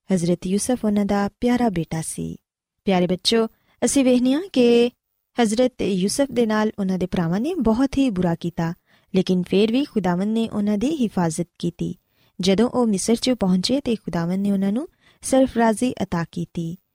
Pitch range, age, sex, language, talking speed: 180-240 Hz, 20-39, female, Punjabi, 165 wpm